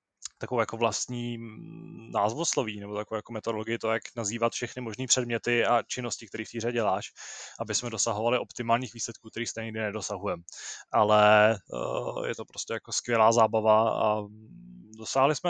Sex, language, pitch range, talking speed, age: male, Czech, 105-115 Hz, 150 wpm, 20-39